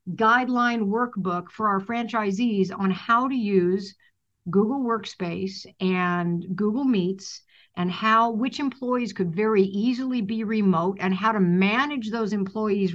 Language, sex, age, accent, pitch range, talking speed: English, female, 50-69, American, 180-225 Hz, 135 wpm